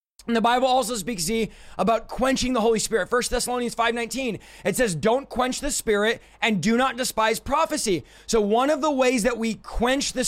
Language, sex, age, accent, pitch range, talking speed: English, male, 20-39, American, 225-260 Hz, 200 wpm